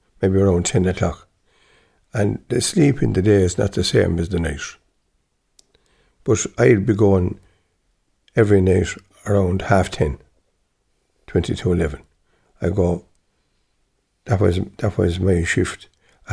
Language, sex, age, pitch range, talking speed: English, male, 60-79, 90-105 Hz, 140 wpm